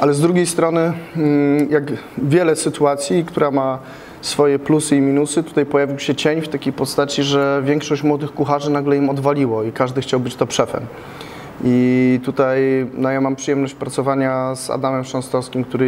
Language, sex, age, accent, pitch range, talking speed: Polish, male, 20-39, native, 135-155 Hz, 165 wpm